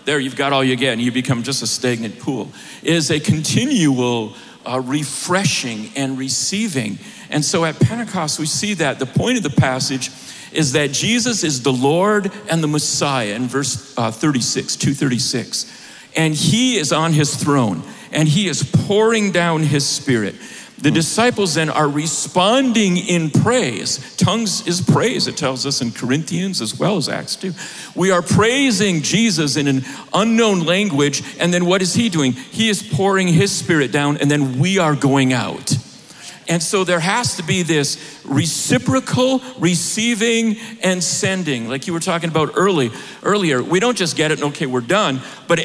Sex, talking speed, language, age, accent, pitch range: male, 175 wpm, English, 50-69, American, 140-190 Hz